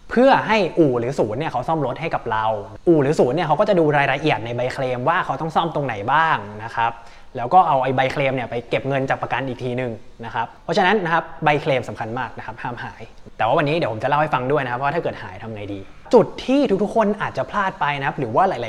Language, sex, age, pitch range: Thai, male, 20-39, 125-180 Hz